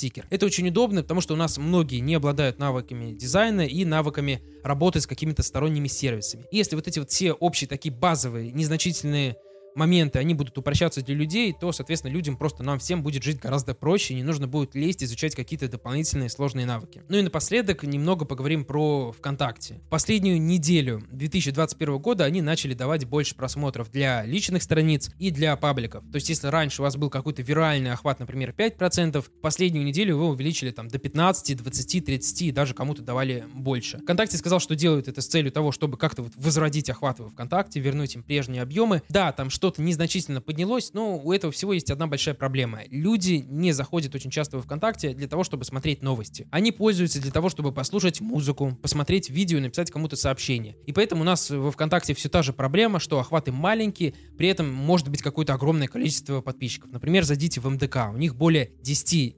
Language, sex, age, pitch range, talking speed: Russian, male, 20-39, 135-170 Hz, 190 wpm